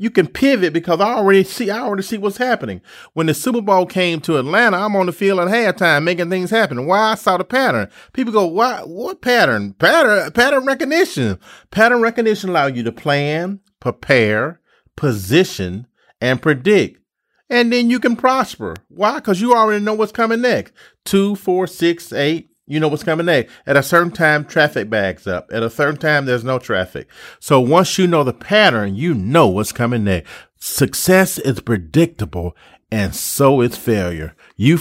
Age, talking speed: 40-59, 185 wpm